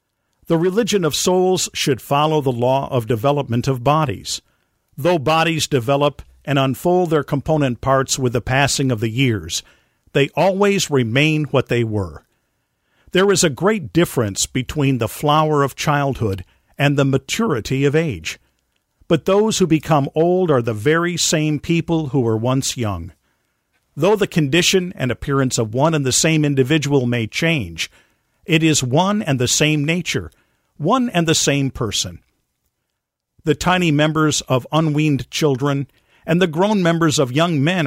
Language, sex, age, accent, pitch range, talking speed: English, male, 50-69, American, 120-165 Hz, 155 wpm